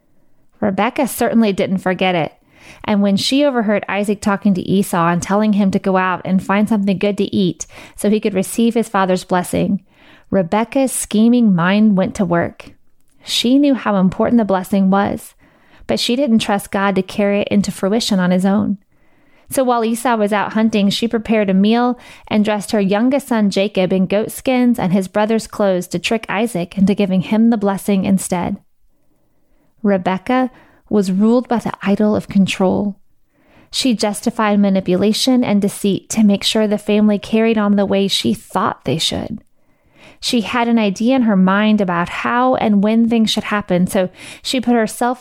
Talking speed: 180 wpm